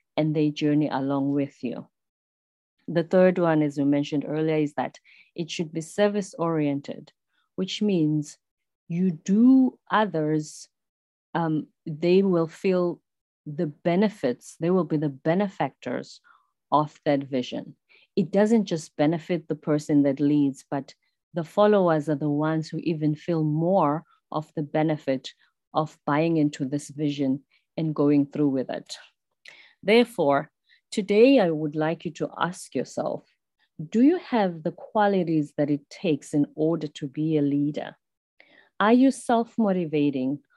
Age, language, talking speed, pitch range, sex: 40-59, English, 140 wpm, 145-180 Hz, female